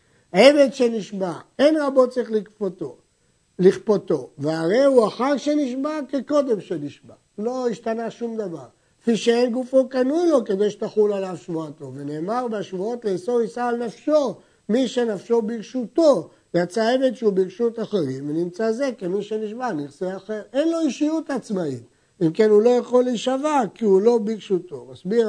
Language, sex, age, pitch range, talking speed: Hebrew, male, 60-79, 165-240 Hz, 145 wpm